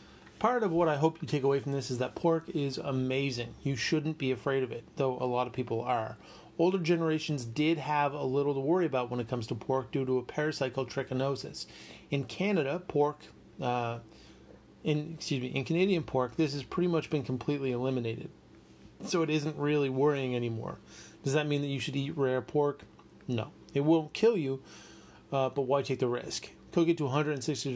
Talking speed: 200 wpm